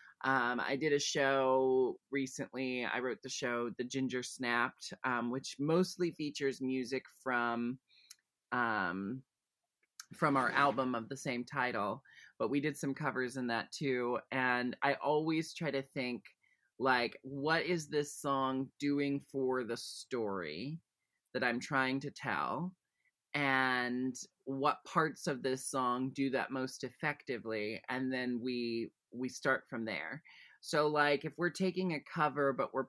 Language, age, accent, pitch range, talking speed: English, 30-49, American, 120-145 Hz, 150 wpm